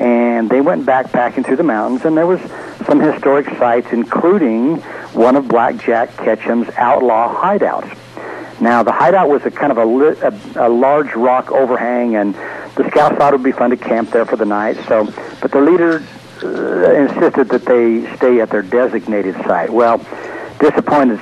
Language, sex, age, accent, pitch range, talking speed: English, male, 60-79, American, 115-135 Hz, 180 wpm